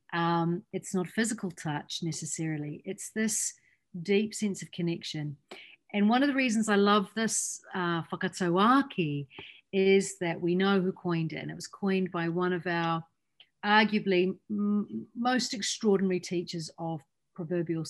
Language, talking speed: English, 150 wpm